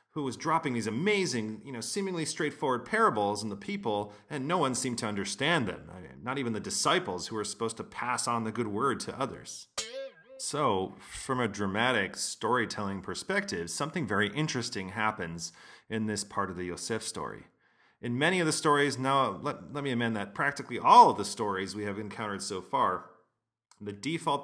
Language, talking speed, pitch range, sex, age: English, 190 wpm, 100-130 Hz, male, 30-49